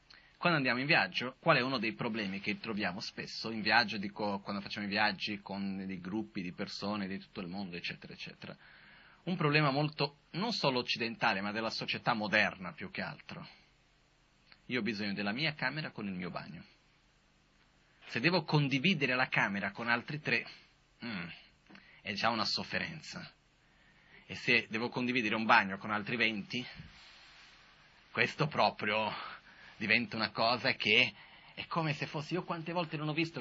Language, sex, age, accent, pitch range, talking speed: Italian, male, 30-49, native, 105-150 Hz, 165 wpm